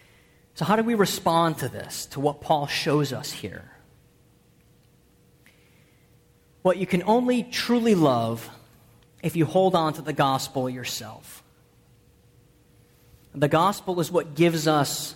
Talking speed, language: 130 wpm, English